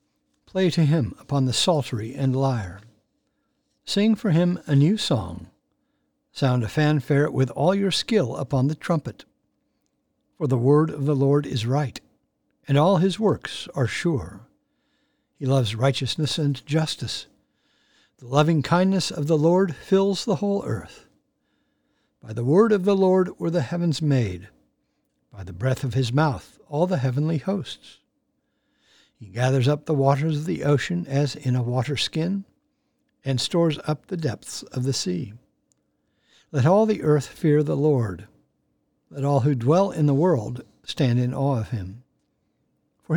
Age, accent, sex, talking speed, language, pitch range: 60-79, American, male, 160 wpm, English, 130-165 Hz